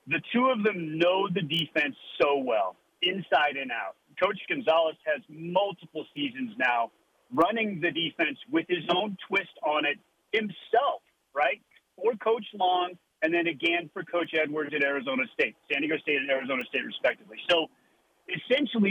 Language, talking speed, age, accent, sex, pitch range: English, 160 wpm, 40-59, American, male, 170-235 Hz